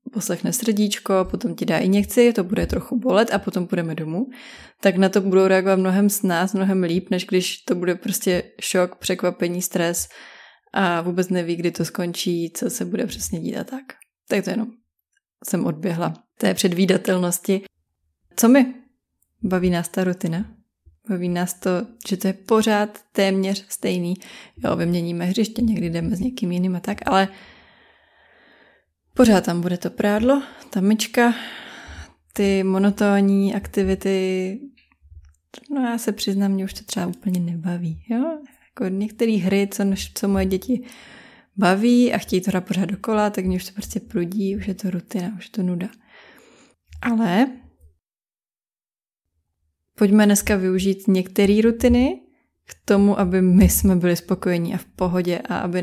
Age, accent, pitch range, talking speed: 20-39, native, 180-215 Hz, 155 wpm